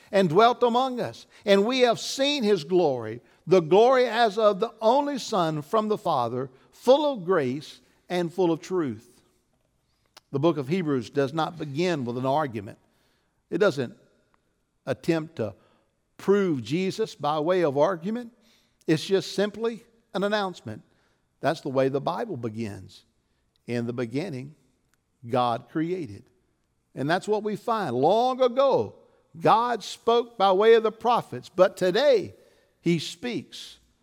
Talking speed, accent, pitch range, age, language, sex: 145 wpm, American, 125-200 Hz, 60-79, English, male